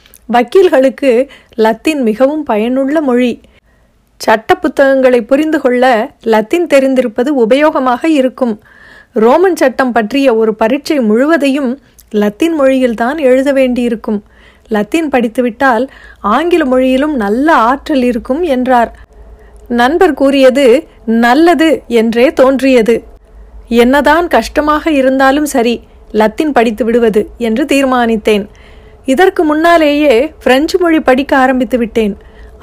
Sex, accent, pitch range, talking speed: female, native, 230-280 Hz, 95 wpm